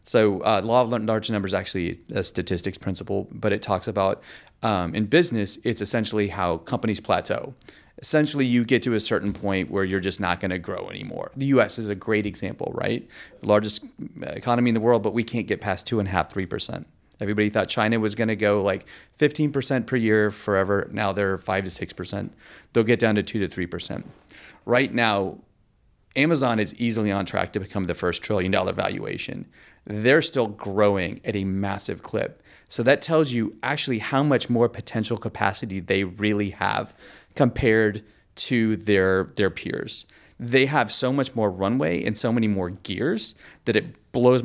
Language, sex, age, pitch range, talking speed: English, male, 30-49, 100-120 Hz, 190 wpm